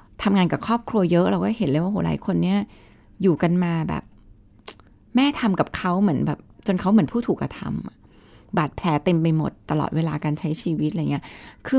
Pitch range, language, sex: 160-210 Hz, Thai, female